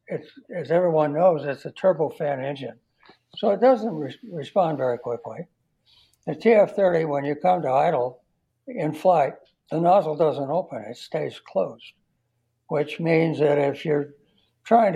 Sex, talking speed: male, 140 wpm